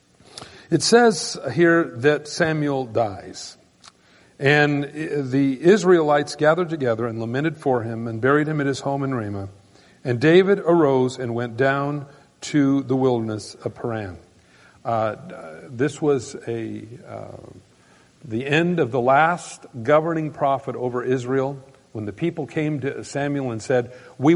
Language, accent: English, American